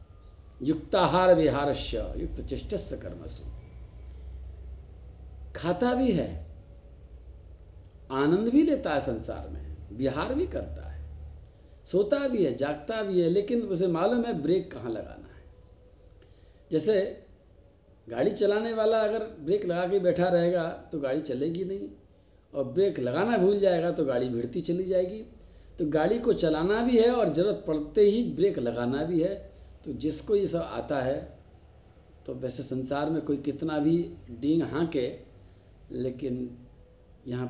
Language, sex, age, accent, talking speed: Hindi, male, 60-79, native, 140 wpm